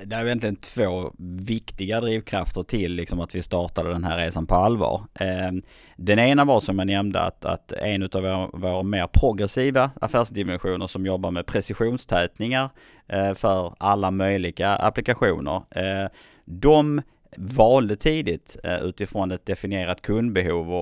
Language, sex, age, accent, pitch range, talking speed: Swedish, male, 30-49, Norwegian, 90-105 Hz, 130 wpm